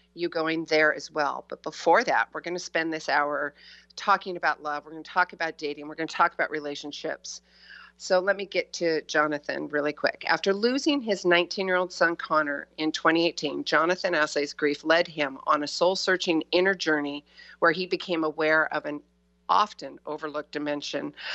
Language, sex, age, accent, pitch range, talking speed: English, female, 50-69, American, 150-185 Hz, 190 wpm